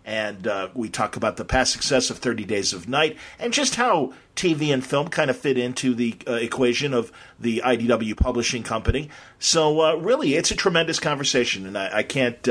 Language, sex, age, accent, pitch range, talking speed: English, male, 40-59, American, 110-140 Hz, 200 wpm